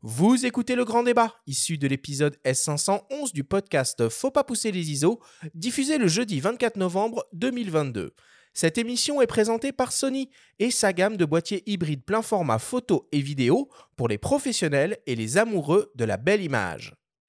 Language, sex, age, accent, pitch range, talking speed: French, male, 30-49, French, 140-225 Hz, 170 wpm